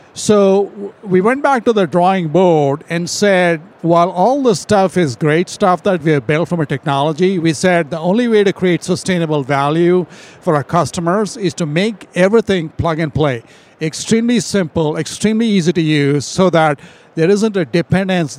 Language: English